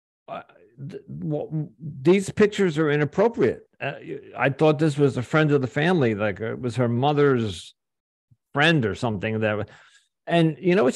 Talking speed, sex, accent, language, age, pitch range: 155 wpm, male, American, English, 50-69, 110-155 Hz